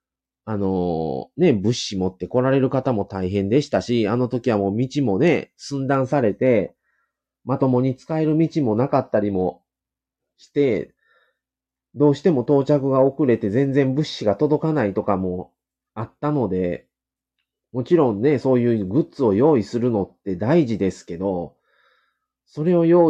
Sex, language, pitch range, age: male, Japanese, 100-140 Hz, 30-49